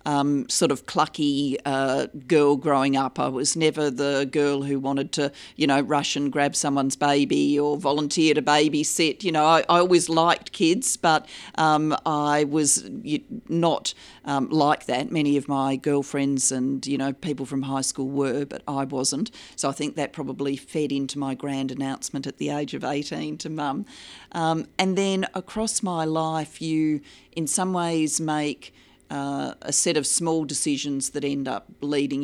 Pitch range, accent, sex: 135-155 Hz, Australian, female